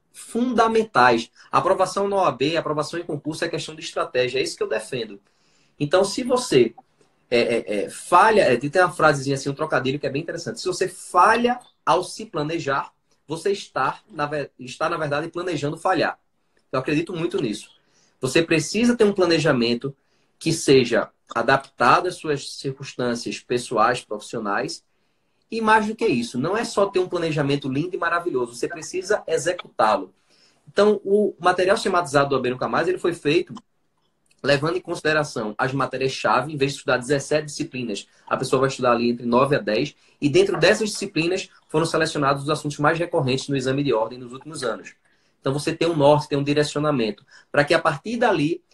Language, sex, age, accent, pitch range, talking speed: Portuguese, male, 20-39, Brazilian, 140-195 Hz, 165 wpm